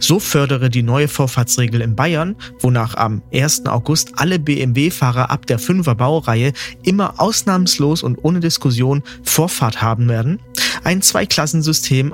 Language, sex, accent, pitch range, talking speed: German, male, German, 125-170 Hz, 135 wpm